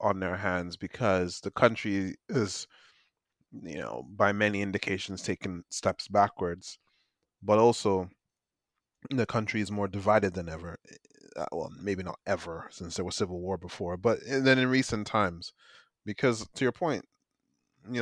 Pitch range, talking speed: 100-120 Hz, 145 wpm